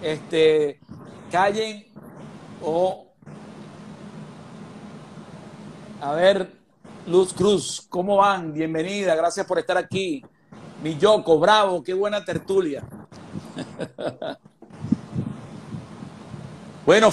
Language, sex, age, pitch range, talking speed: Spanish, male, 50-69, 160-195 Hz, 75 wpm